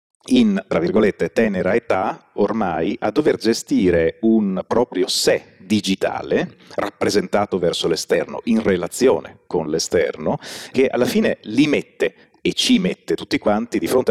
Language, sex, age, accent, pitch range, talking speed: Italian, male, 40-59, native, 95-150 Hz, 135 wpm